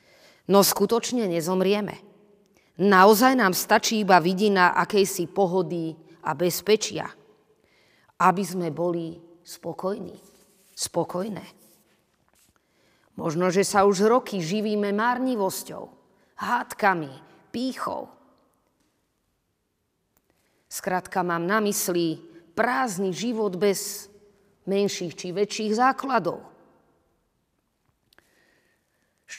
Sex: female